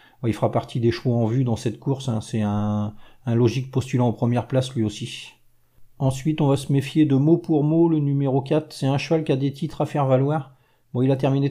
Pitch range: 120-150 Hz